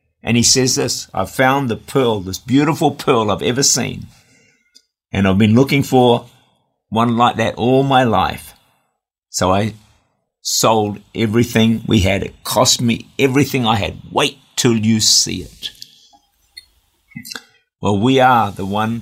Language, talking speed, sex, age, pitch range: English, 150 wpm, male, 50-69, 105-125 Hz